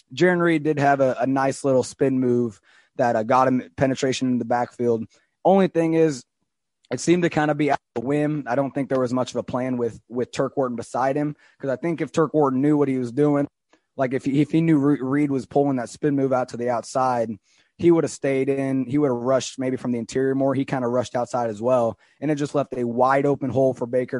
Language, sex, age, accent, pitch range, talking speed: English, male, 20-39, American, 120-145 Hz, 260 wpm